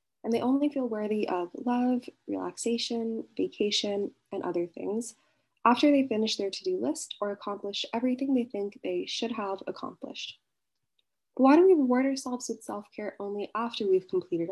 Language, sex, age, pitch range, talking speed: English, female, 20-39, 200-265 Hz, 160 wpm